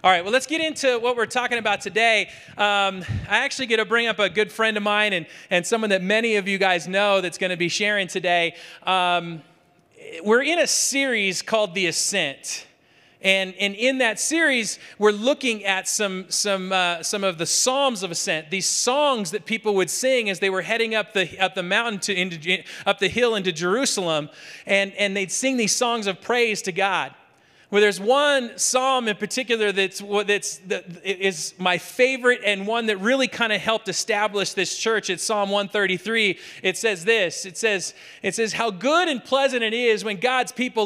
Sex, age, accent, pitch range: male, 40-59, American, 190-230 Hz